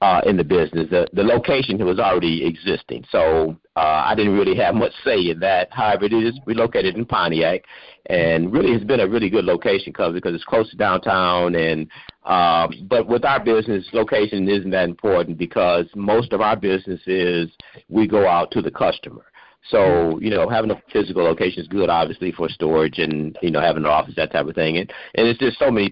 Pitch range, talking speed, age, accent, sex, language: 90-110 Hz, 210 wpm, 50-69, American, male, English